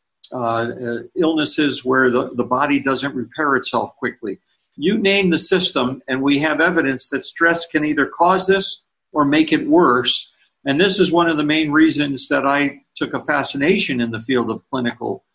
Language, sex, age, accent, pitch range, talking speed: English, male, 50-69, American, 125-160 Hz, 185 wpm